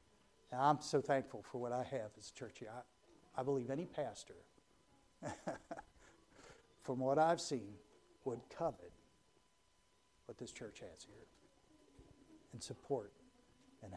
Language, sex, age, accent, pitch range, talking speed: English, male, 60-79, American, 125-150 Hz, 125 wpm